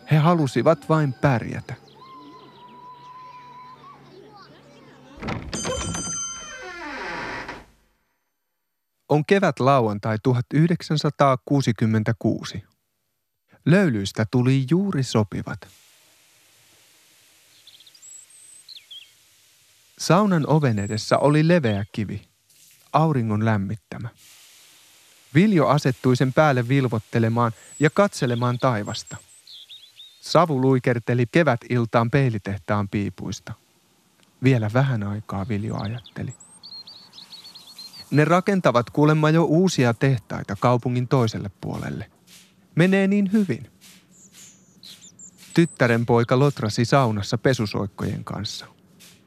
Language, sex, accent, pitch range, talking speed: Finnish, male, native, 110-170 Hz, 70 wpm